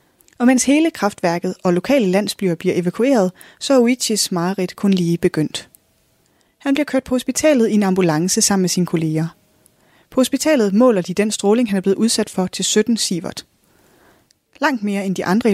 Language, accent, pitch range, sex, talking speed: Danish, native, 180-240 Hz, female, 180 wpm